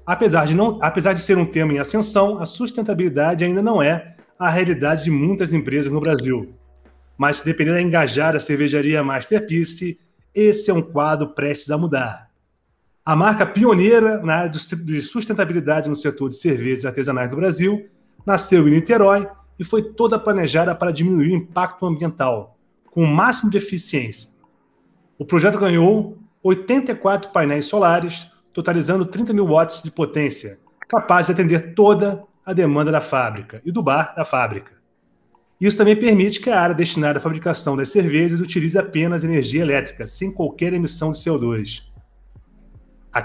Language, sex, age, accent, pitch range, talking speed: Portuguese, male, 30-49, Brazilian, 150-200 Hz, 155 wpm